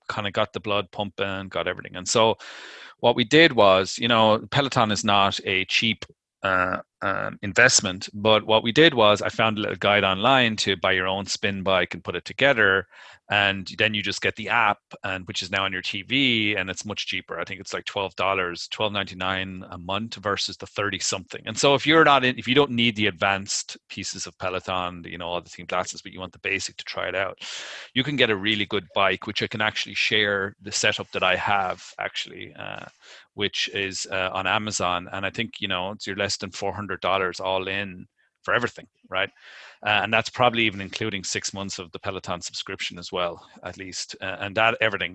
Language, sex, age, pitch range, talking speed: English, male, 30-49, 95-110 Hz, 225 wpm